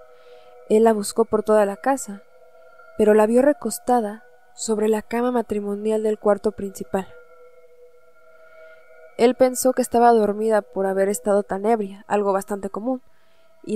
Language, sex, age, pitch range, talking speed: Spanish, female, 20-39, 205-260 Hz, 140 wpm